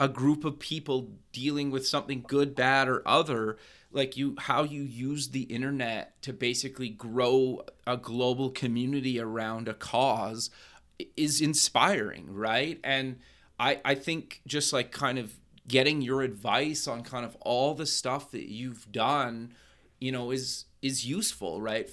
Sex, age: male, 30-49